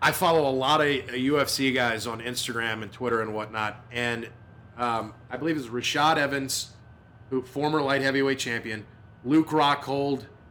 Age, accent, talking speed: 30-49, American, 155 wpm